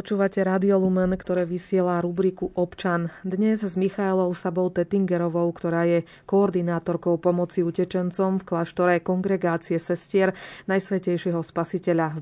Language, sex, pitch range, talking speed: Slovak, female, 175-190 Hz, 110 wpm